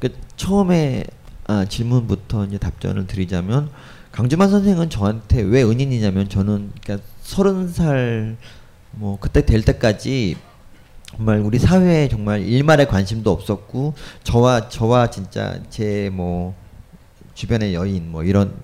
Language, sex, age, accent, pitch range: Korean, male, 40-59, native, 100-145 Hz